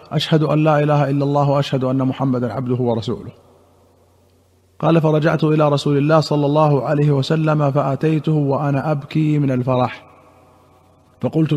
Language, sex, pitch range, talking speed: Arabic, male, 130-150 Hz, 135 wpm